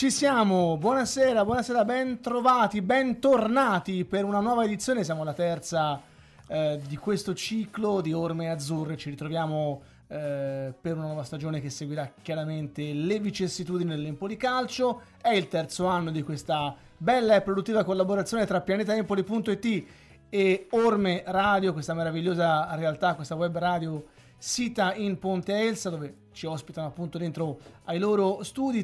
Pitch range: 160-215 Hz